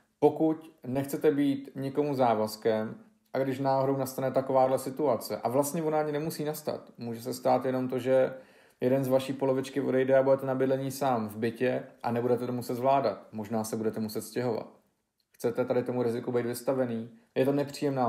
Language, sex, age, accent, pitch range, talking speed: Czech, male, 40-59, native, 115-130 Hz, 175 wpm